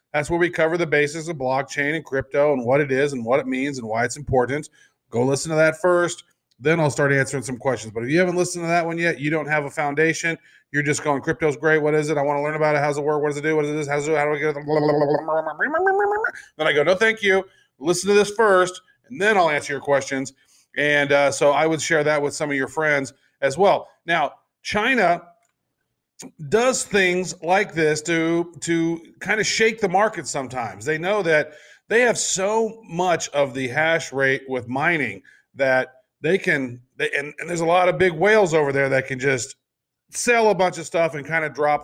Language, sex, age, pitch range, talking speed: English, male, 40-59, 140-175 Hz, 230 wpm